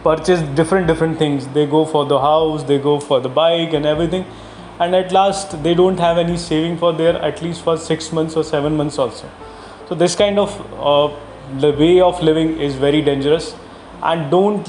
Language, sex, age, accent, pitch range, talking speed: Hindi, male, 20-39, native, 140-165 Hz, 200 wpm